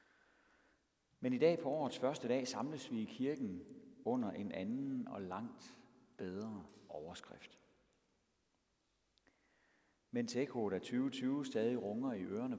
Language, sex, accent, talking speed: Danish, male, native, 125 wpm